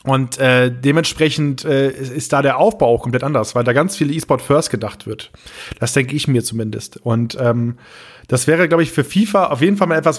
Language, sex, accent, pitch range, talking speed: German, male, German, 130-170 Hz, 210 wpm